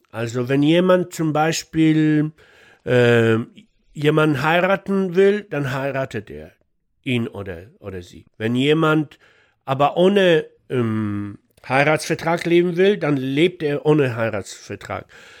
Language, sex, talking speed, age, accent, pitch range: German, male, 115 wpm, 60-79, German, 135-180 Hz